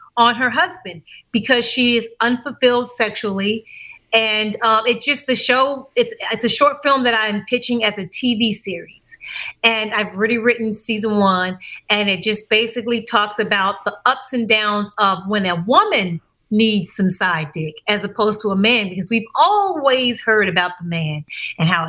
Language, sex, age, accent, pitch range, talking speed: English, female, 30-49, American, 200-230 Hz, 180 wpm